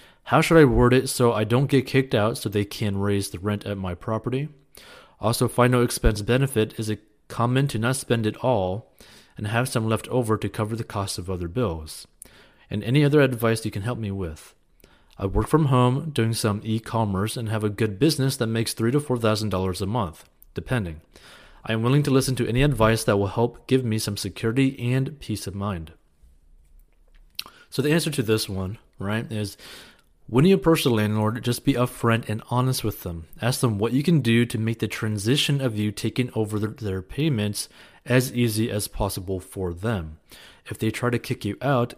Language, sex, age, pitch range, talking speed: English, male, 30-49, 100-125 Hz, 205 wpm